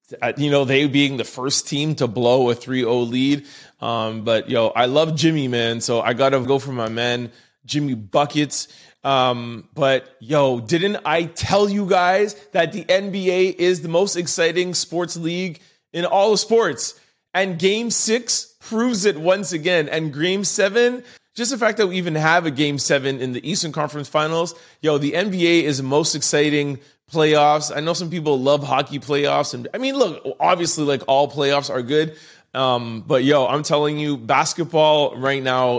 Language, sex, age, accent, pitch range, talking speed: English, male, 30-49, American, 125-170 Hz, 185 wpm